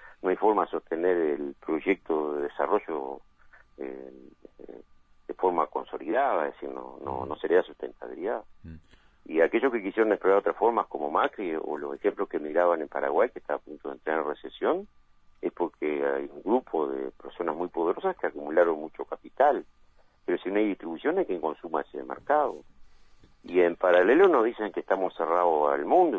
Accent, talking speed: Argentinian, 180 wpm